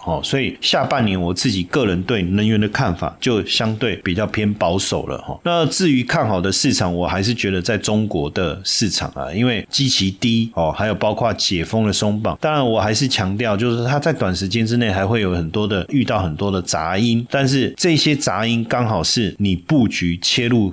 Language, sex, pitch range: Chinese, male, 95-125 Hz